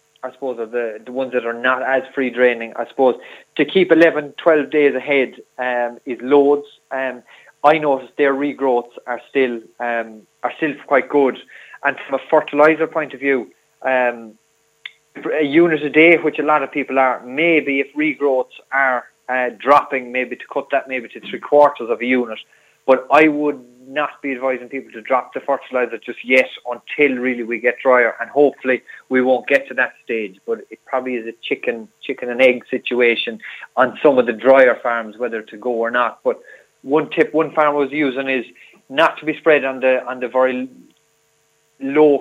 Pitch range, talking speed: 125-150 Hz, 190 wpm